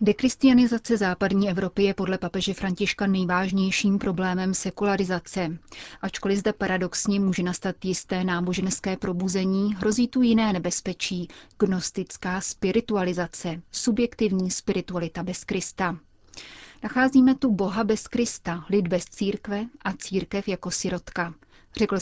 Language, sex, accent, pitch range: Czech, female, native, 180-205 Hz